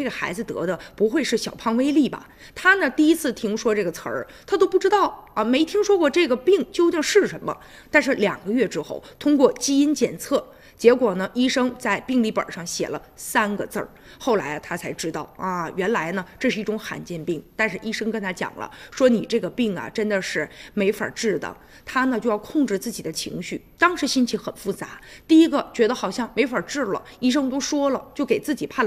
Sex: female